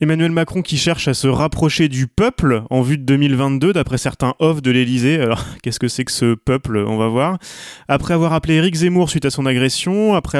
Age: 20-39